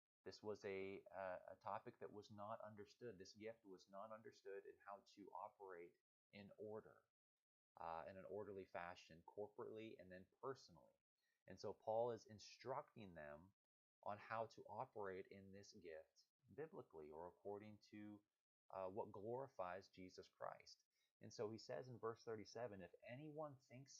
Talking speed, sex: 155 wpm, male